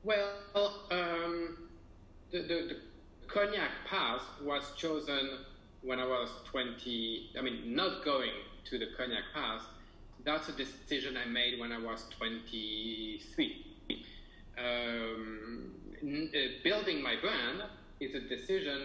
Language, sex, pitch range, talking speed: English, male, 115-145 Hz, 120 wpm